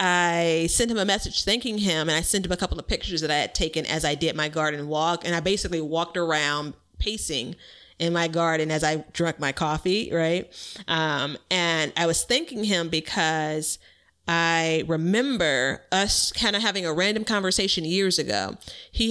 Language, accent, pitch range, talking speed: English, American, 155-180 Hz, 185 wpm